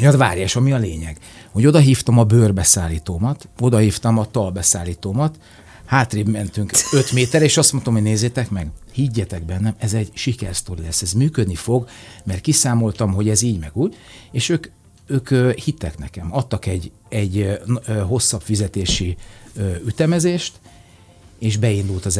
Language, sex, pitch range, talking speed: Hungarian, male, 95-120 Hz, 150 wpm